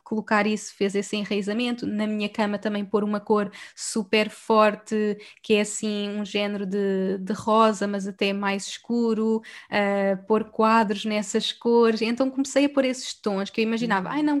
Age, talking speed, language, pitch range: 10-29, 175 wpm, Portuguese, 210-240 Hz